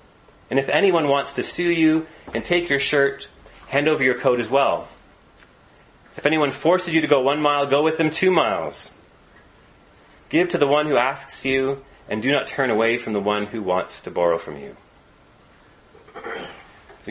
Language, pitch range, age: English, 105-145 Hz, 30-49